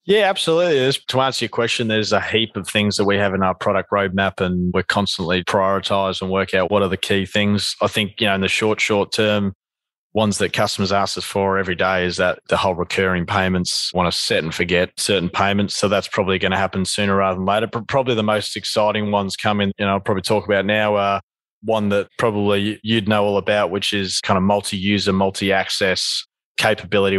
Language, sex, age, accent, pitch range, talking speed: English, male, 20-39, Australian, 90-100 Hz, 215 wpm